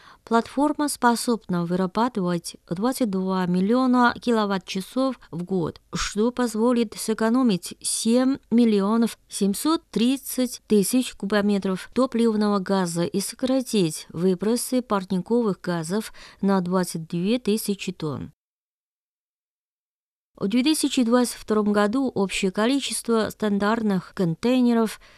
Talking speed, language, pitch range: 80 wpm, Russian, 185-235 Hz